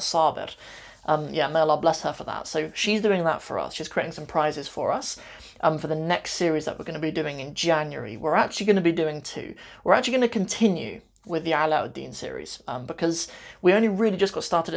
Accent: British